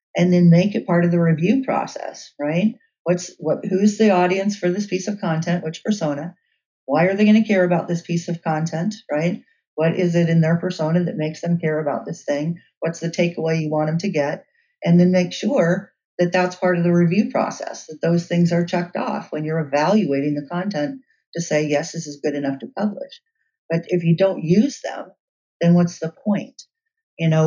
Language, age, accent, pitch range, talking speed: English, 50-69, American, 155-185 Hz, 215 wpm